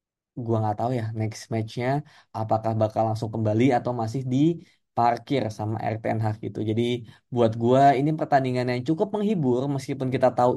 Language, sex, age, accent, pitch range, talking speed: Indonesian, male, 20-39, native, 115-140 Hz, 160 wpm